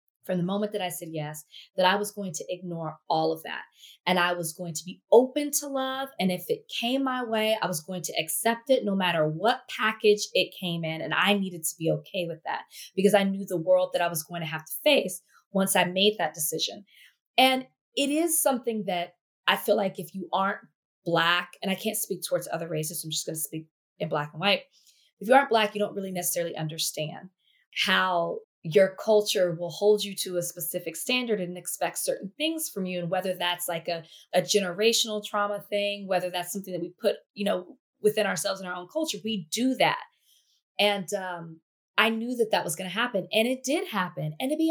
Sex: female